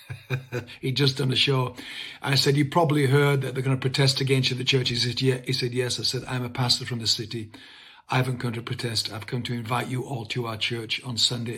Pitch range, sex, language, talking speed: 115-130 Hz, male, English, 260 wpm